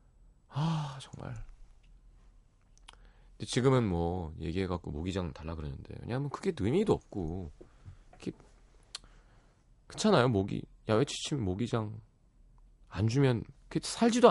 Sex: male